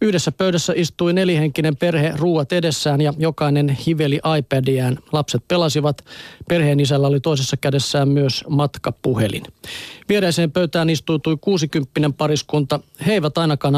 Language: Finnish